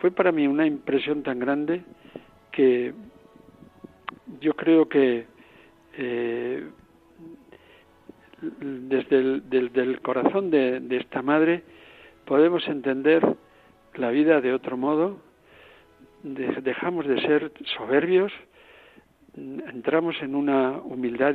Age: 60-79